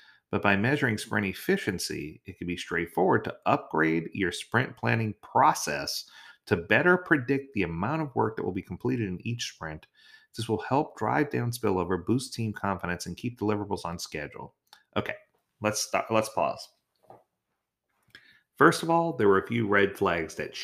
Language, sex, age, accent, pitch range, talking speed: English, male, 30-49, American, 95-135 Hz, 170 wpm